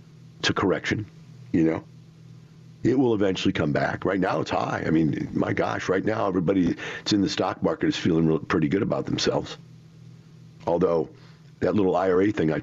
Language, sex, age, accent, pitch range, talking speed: English, male, 50-69, American, 95-150 Hz, 175 wpm